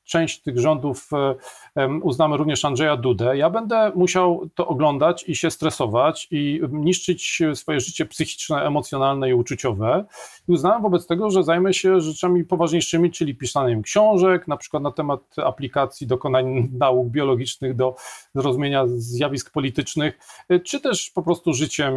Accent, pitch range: native, 145-185 Hz